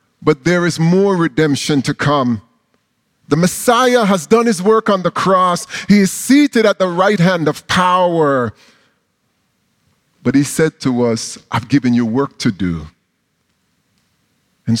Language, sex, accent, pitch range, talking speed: English, male, American, 135-190 Hz, 150 wpm